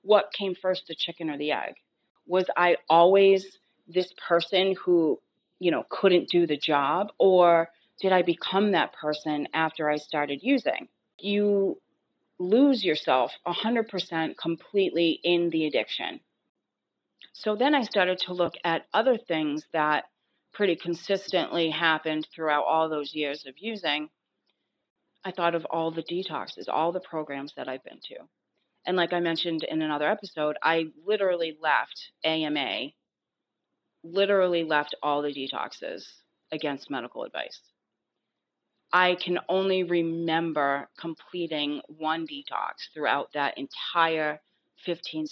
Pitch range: 150-185 Hz